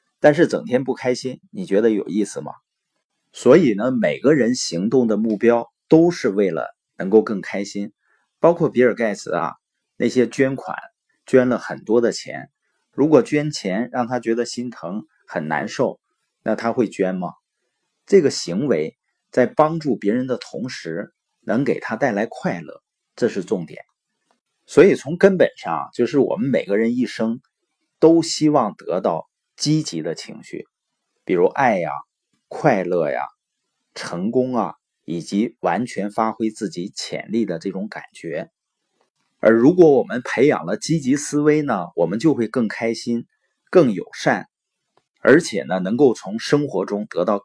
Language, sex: Chinese, male